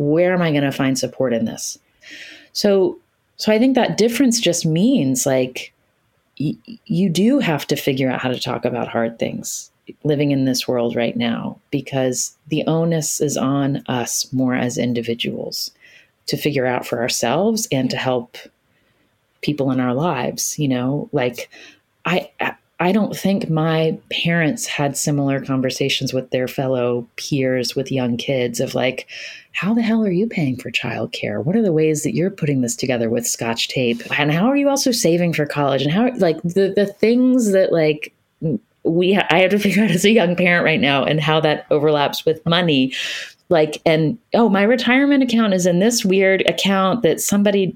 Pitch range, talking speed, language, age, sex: 135-200 Hz, 185 wpm, English, 30-49, female